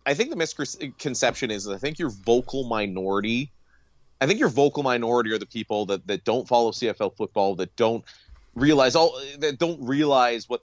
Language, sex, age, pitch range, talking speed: English, male, 30-49, 105-140 Hz, 185 wpm